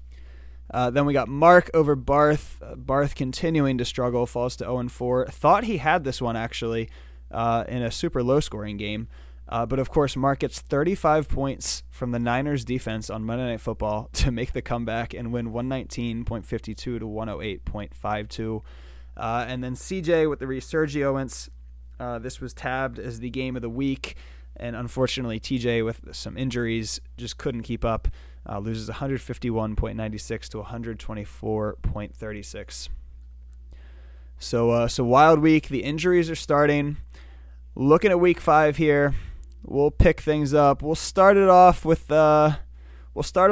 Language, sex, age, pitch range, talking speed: English, male, 20-39, 110-145 Hz, 150 wpm